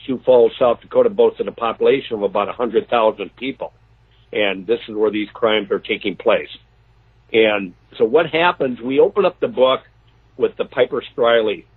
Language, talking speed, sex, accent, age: English, 170 wpm, male, American, 60-79